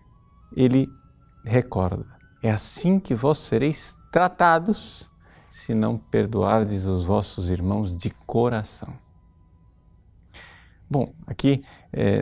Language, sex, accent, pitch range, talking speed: Portuguese, male, Brazilian, 105-155 Hz, 95 wpm